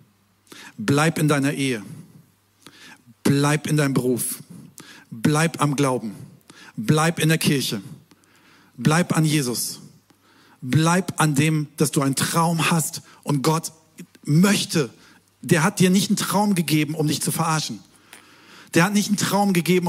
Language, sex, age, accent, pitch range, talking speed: German, male, 50-69, German, 125-160 Hz, 140 wpm